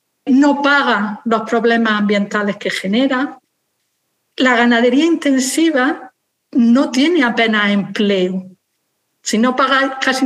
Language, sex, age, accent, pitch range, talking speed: Spanish, female, 50-69, Spanish, 210-255 Hz, 105 wpm